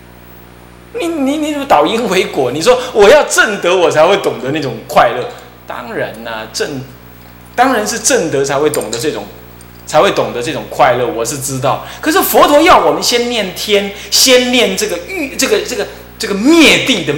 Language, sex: Chinese, male